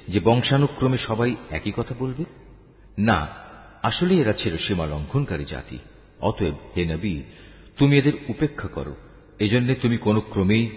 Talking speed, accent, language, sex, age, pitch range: 135 wpm, native, Bengali, male, 50-69, 90-125 Hz